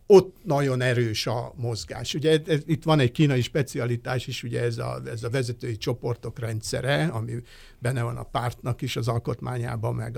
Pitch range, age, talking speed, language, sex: 120-155 Hz, 60-79, 170 wpm, Hungarian, male